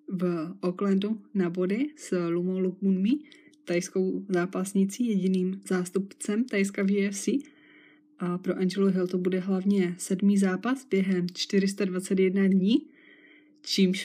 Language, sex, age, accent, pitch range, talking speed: Czech, female, 20-39, native, 185-205 Hz, 115 wpm